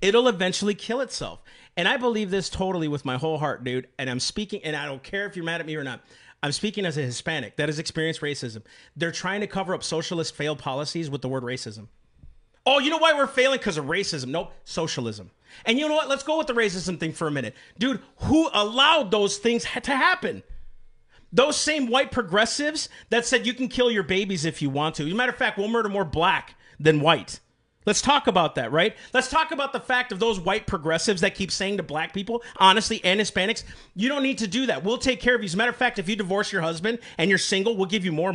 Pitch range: 170-255 Hz